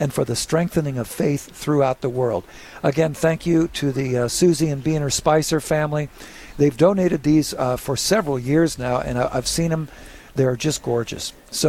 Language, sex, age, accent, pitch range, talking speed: English, male, 50-69, American, 140-165 Hz, 195 wpm